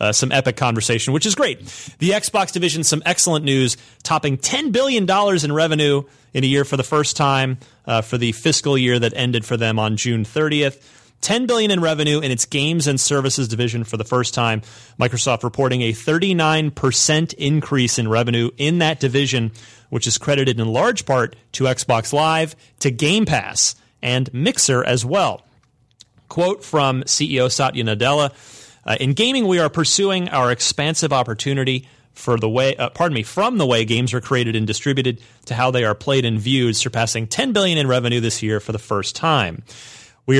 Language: English